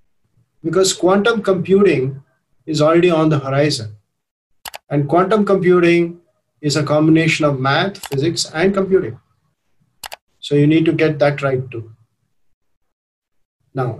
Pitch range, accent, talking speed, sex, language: 130-175 Hz, Indian, 120 wpm, male, English